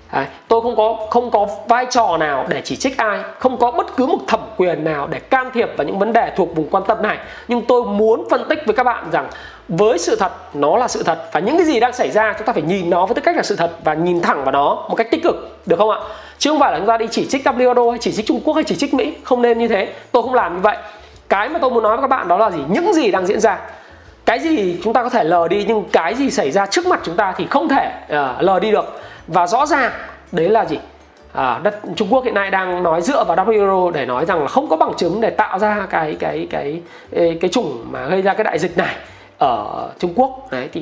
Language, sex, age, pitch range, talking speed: Vietnamese, male, 20-39, 175-240 Hz, 280 wpm